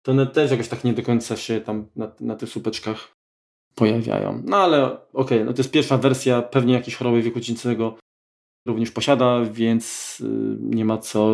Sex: male